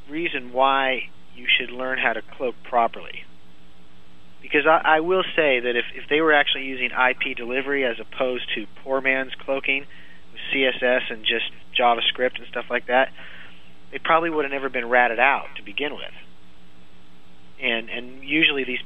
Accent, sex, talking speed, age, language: American, male, 170 wpm, 40-59, English